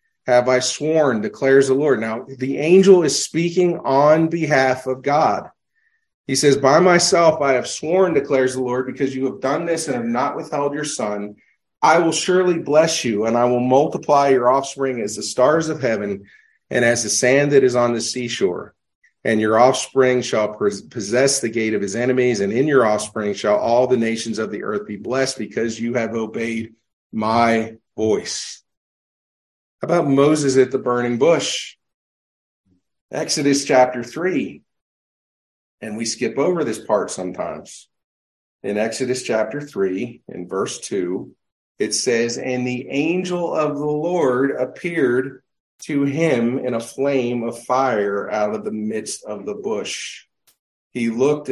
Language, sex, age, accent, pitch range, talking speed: English, male, 40-59, American, 115-145 Hz, 160 wpm